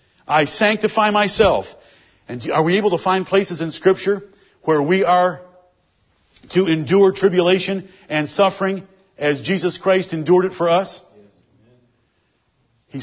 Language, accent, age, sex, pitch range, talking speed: English, American, 50-69, male, 145-190 Hz, 130 wpm